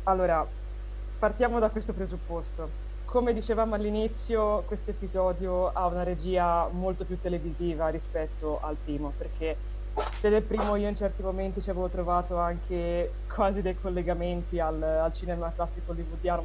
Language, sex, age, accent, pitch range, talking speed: Italian, female, 20-39, native, 170-205 Hz, 140 wpm